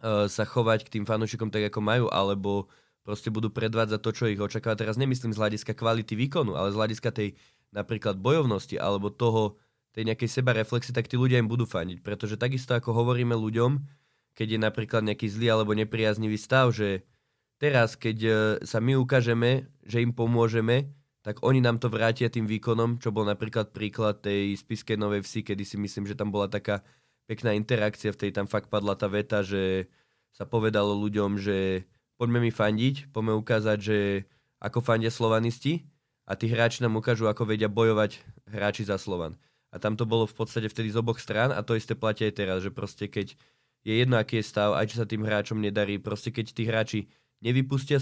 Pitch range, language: 105-115 Hz, Slovak